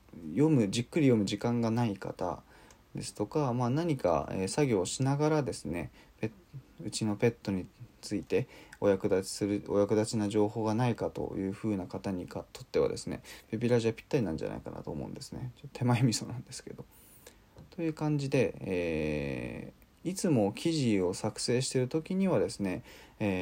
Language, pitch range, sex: Japanese, 95-125 Hz, male